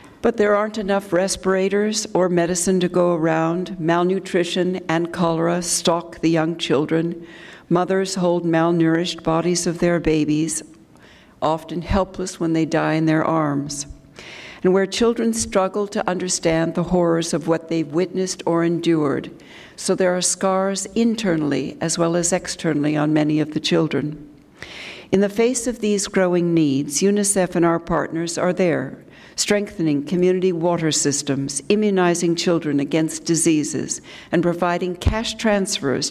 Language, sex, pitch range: English, female, 160-190 Hz